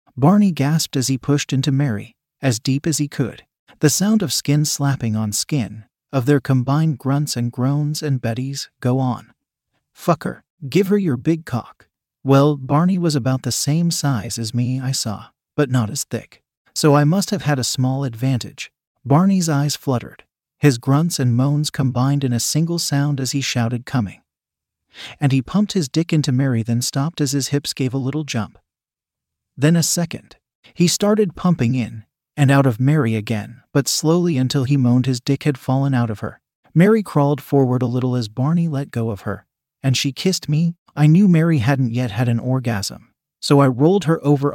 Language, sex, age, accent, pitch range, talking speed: English, male, 40-59, American, 125-155 Hz, 190 wpm